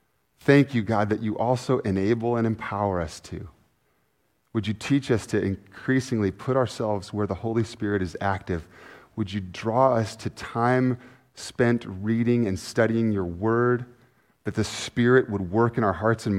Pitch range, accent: 110-140 Hz, American